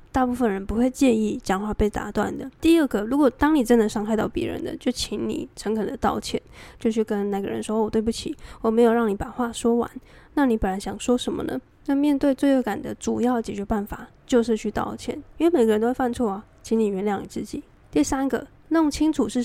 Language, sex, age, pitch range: Chinese, female, 10-29, 210-260 Hz